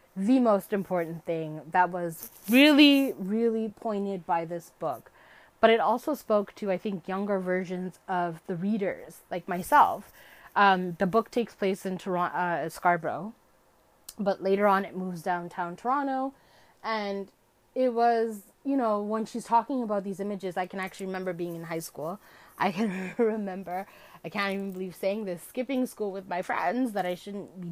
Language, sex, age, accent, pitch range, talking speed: English, female, 20-39, American, 185-225 Hz, 170 wpm